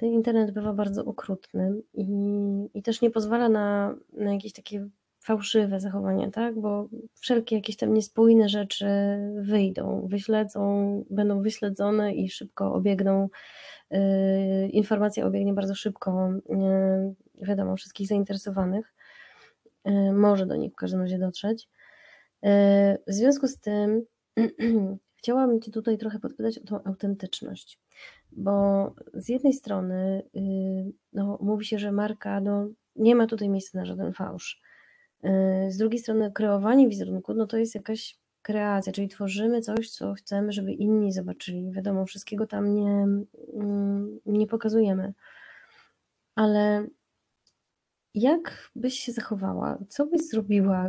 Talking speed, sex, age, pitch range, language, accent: 125 wpm, female, 20-39, 200-225 Hz, Polish, native